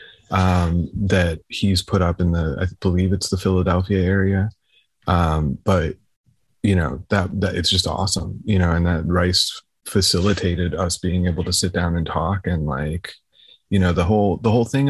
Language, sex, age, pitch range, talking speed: English, male, 30-49, 90-105 Hz, 180 wpm